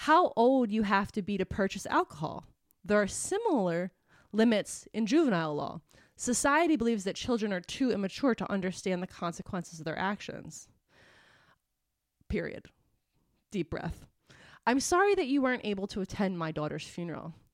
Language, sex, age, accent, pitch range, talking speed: English, female, 20-39, American, 175-230 Hz, 150 wpm